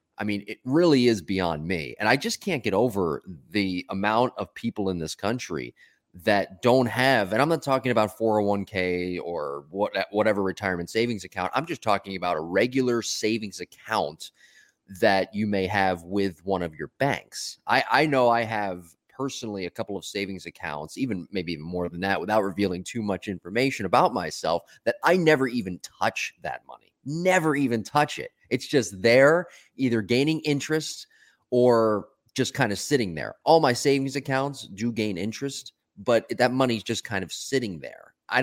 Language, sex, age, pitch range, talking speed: English, male, 30-49, 95-125 Hz, 180 wpm